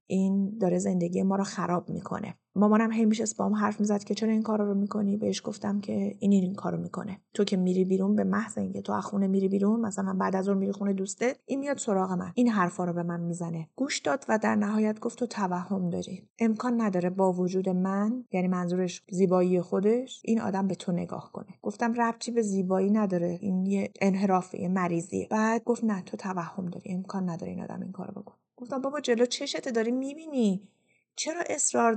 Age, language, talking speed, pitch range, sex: 30-49, Persian, 205 wpm, 190-240 Hz, female